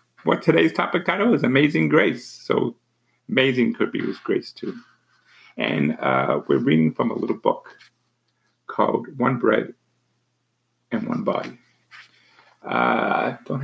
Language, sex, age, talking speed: English, male, 50-69, 130 wpm